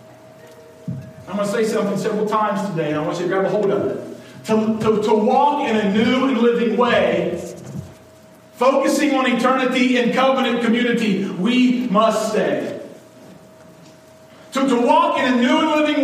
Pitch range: 215-260 Hz